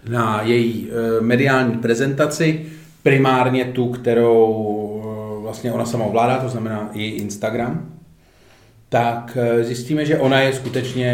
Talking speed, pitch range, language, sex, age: 130 wpm, 110-140 Hz, Czech, male, 40-59